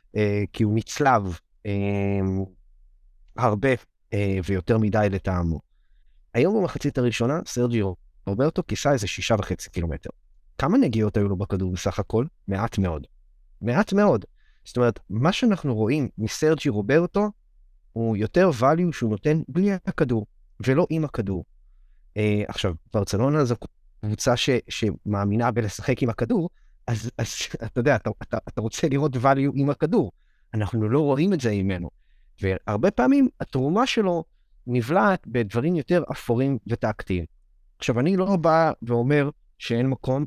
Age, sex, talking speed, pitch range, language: 30-49, male, 135 wpm, 100-150 Hz, Hebrew